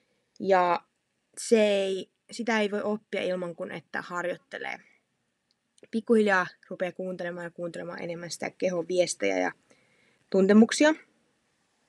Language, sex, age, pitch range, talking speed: Finnish, female, 20-39, 180-235 Hz, 105 wpm